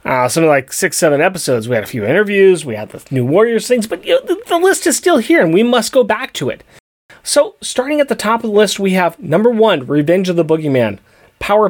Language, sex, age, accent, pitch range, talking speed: English, male, 30-49, American, 140-210 Hz, 255 wpm